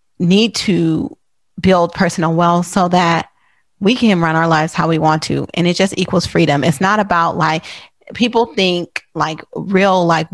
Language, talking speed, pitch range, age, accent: English, 175 wpm, 170-210 Hz, 30-49, American